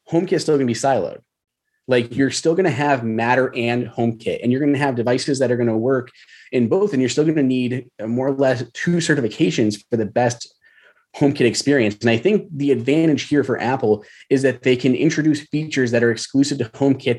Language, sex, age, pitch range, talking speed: English, male, 30-49, 110-140 Hz, 225 wpm